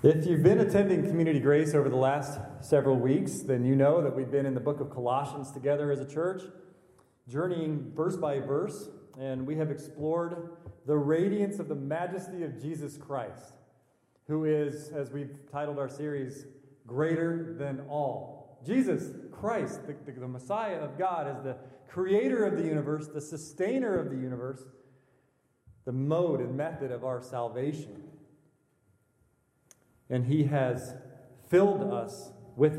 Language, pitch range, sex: English, 130-160 Hz, male